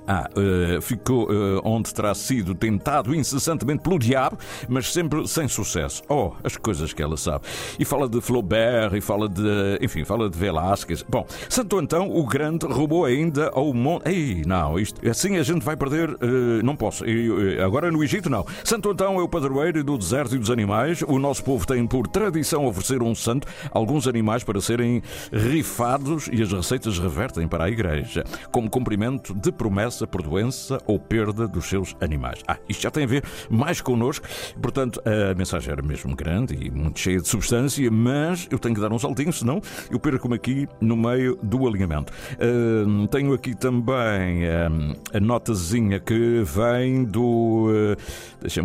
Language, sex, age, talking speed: Portuguese, male, 60-79, 180 wpm